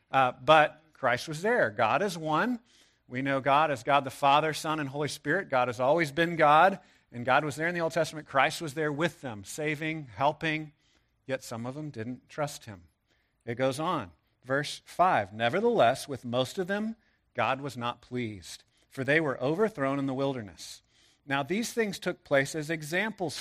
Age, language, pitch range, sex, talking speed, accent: 50-69, English, 125-155 Hz, male, 190 wpm, American